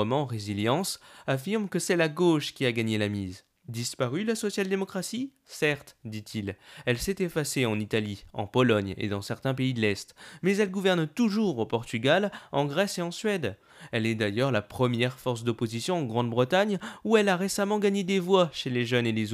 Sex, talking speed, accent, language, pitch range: male, 190 wpm, French, French, 115-185 Hz